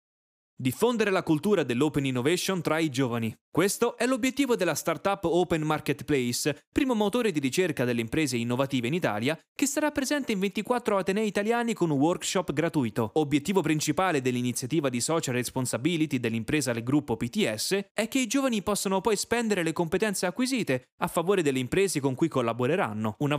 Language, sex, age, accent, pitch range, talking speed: Italian, male, 20-39, native, 135-205 Hz, 160 wpm